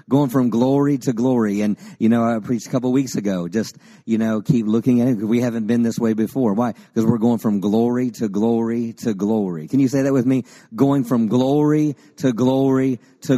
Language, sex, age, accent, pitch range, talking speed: English, male, 40-59, American, 105-130 Hz, 230 wpm